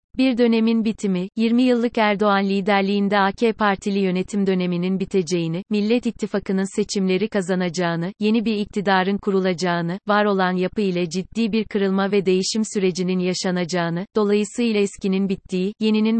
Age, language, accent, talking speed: 30-49, Turkish, native, 130 wpm